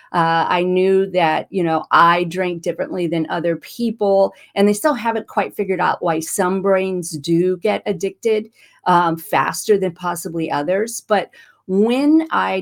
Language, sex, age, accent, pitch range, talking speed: English, female, 40-59, American, 165-205 Hz, 155 wpm